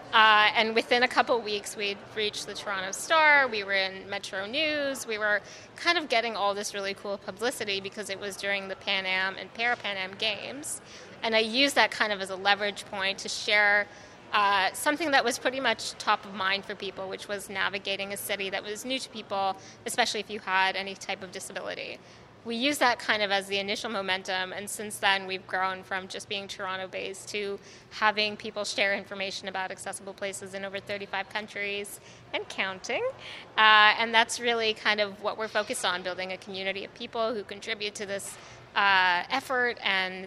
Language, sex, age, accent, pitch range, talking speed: English, female, 20-39, American, 195-220 Hz, 200 wpm